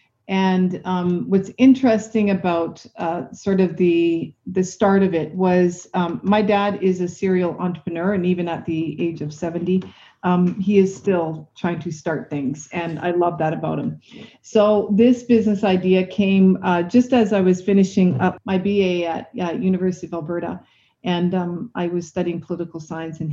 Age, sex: 40-59, female